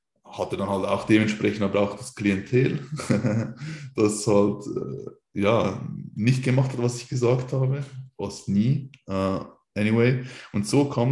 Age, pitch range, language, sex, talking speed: 20-39, 100-120 Hz, German, male, 145 wpm